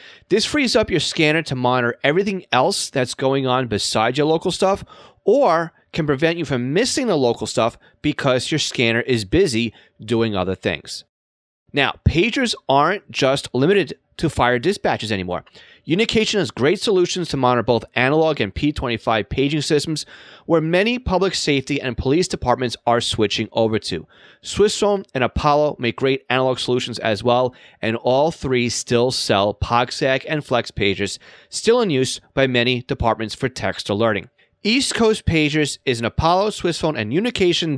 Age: 30-49